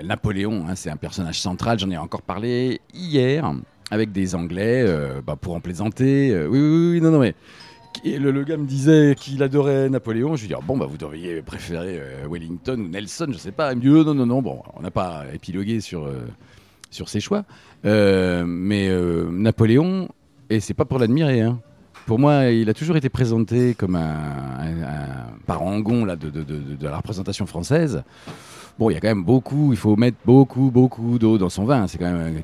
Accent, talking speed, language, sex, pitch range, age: French, 215 wpm, French, male, 85-125 Hz, 40-59